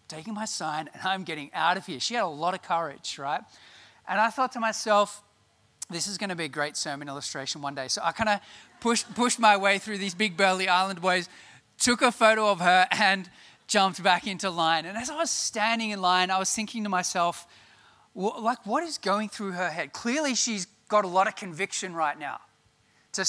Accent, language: Australian, English